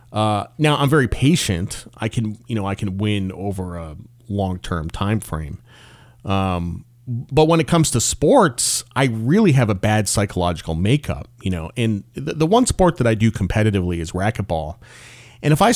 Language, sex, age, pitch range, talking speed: English, male, 30-49, 100-130 Hz, 180 wpm